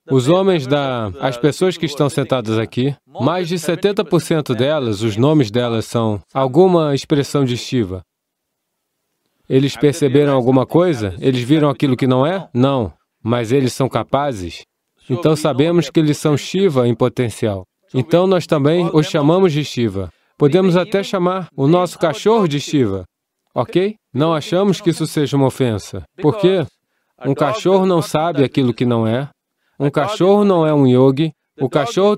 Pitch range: 130-165 Hz